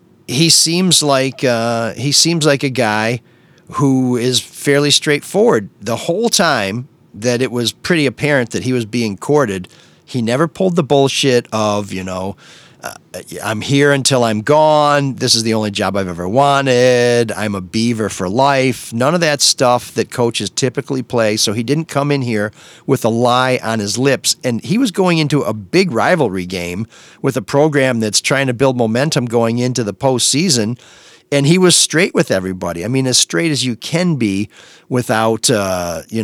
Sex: male